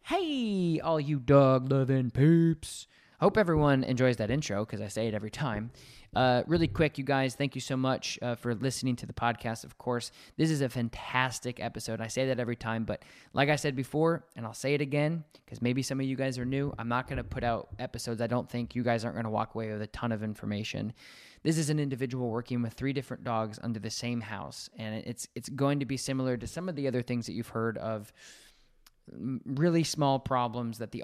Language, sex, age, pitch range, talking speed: English, male, 20-39, 110-135 Hz, 230 wpm